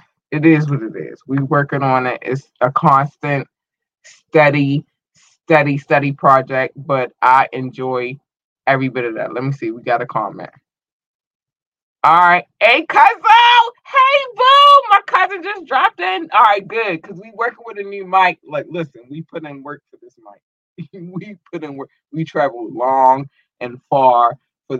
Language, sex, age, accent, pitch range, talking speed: English, male, 20-39, American, 135-175 Hz, 170 wpm